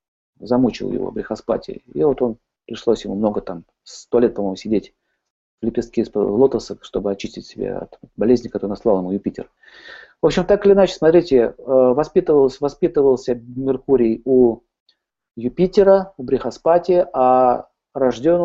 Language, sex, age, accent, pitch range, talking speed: Russian, male, 40-59, native, 120-150 Hz, 135 wpm